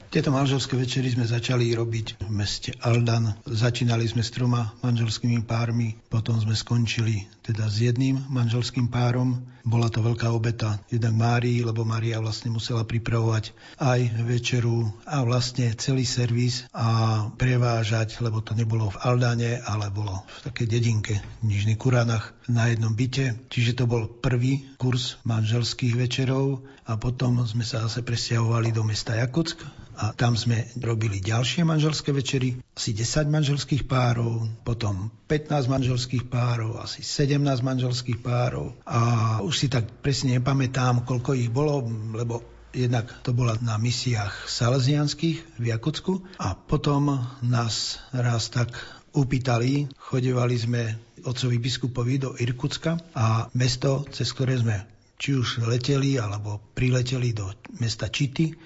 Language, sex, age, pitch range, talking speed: Slovak, male, 40-59, 115-130 Hz, 140 wpm